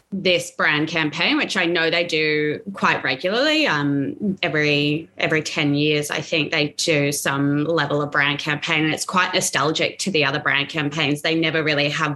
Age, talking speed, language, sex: 20-39, 185 wpm, English, female